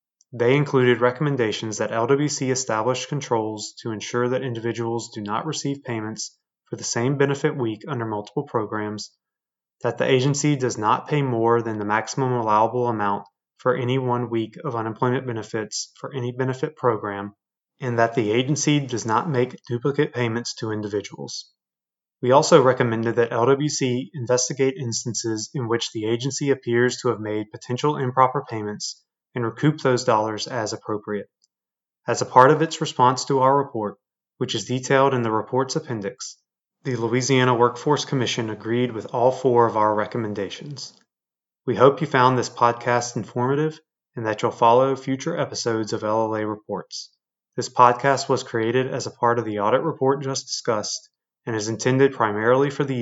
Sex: male